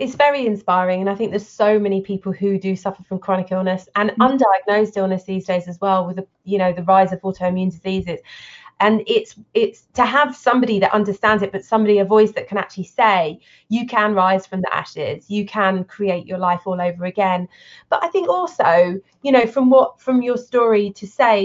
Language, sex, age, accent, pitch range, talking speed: English, female, 20-39, British, 190-245 Hz, 215 wpm